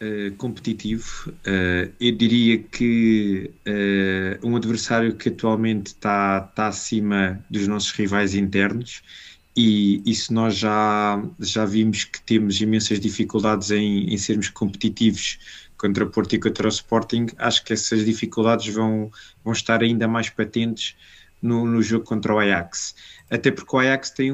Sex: male